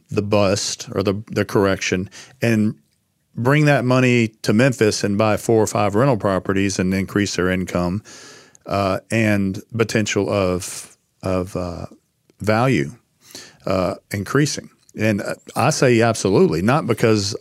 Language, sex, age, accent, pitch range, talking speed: English, male, 50-69, American, 100-125 Hz, 130 wpm